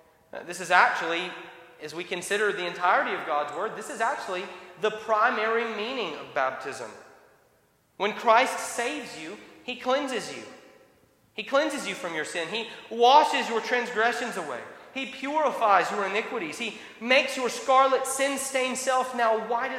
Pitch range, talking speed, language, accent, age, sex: 205-260 Hz, 150 wpm, English, American, 30-49, male